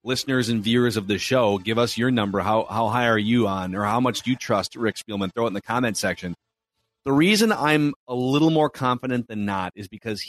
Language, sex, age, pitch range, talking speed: English, male, 30-49, 110-135 Hz, 240 wpm